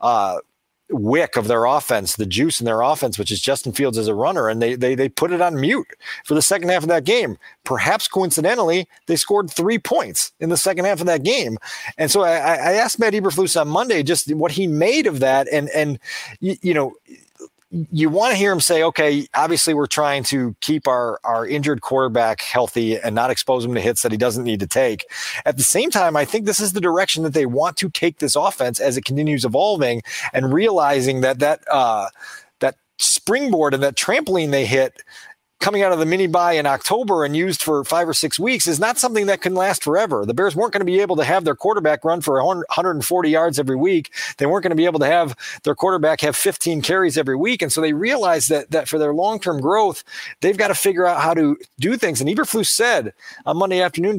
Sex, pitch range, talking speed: male, 140-190 Hz, 230 wpm